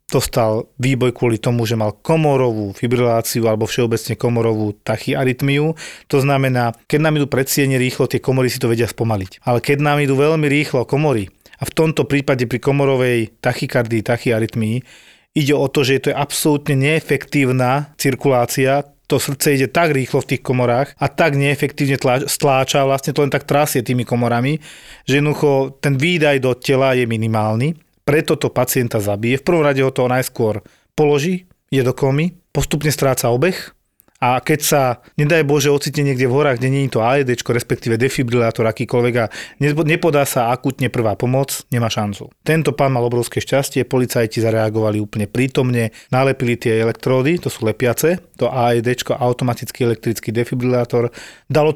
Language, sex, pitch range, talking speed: Slovak, male, 120-145 Hz, 160 wpm